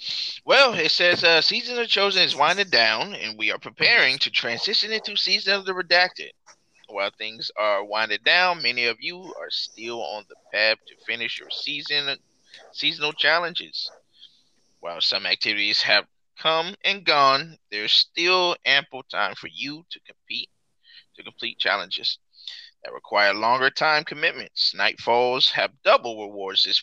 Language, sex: English, male